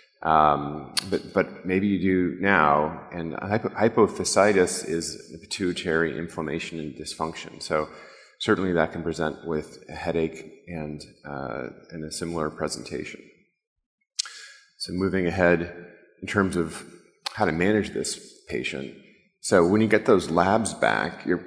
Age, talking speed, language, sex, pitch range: 30-49, 135 wpm, English, male, 75-95 Hz